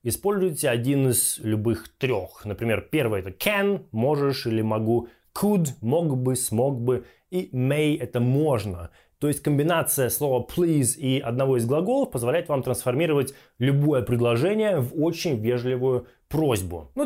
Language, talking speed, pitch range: Russian, 140 wpm, 120-185 Hz